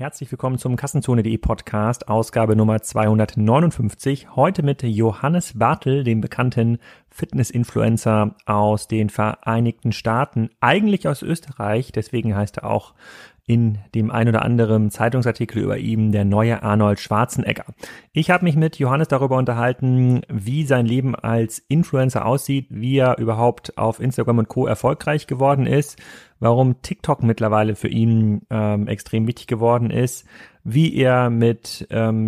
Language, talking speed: German, 140 wpm